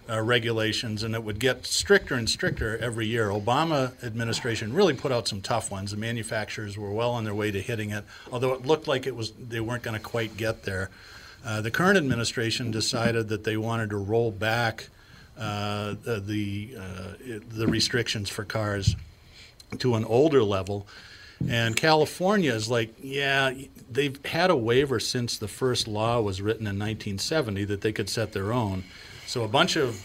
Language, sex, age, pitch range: English, male, 50-69, 105-120 Hz